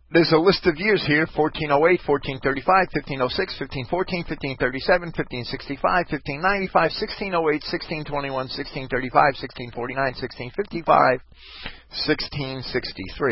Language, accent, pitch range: English, American, 120-165 Hz